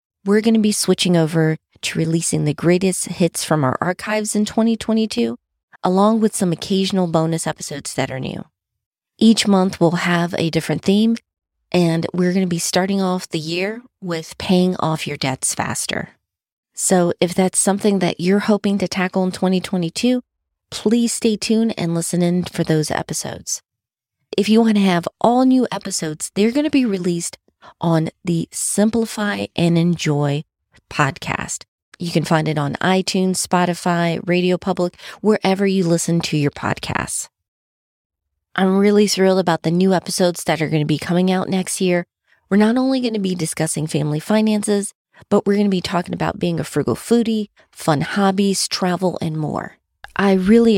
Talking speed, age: 165 wpm, 30-49